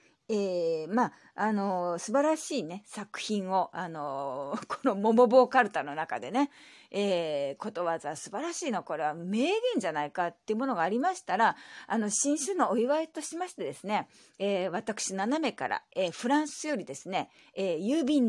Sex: female